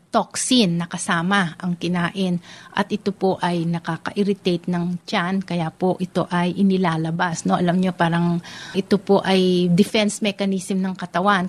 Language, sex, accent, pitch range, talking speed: Filipino, female, native, 170-200 Hz, 140 wpm